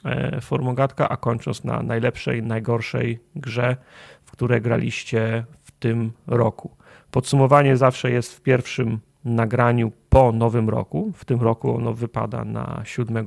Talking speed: 130 wpm